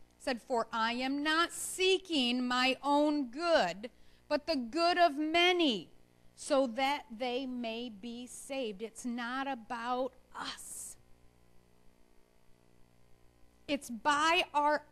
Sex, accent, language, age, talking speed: female, American, English, 40-59, 105 wpm